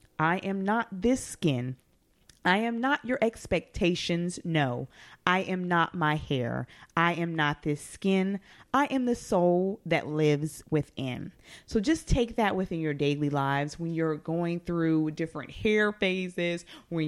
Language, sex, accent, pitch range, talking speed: English, female, American, 145-185 Hz, 155 wpm